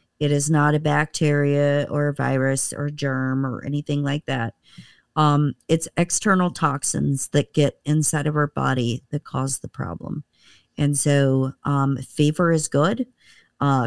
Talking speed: 155 wpm